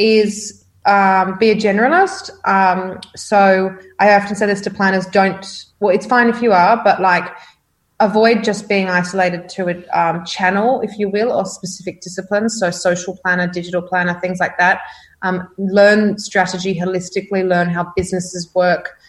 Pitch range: 180-200 Hz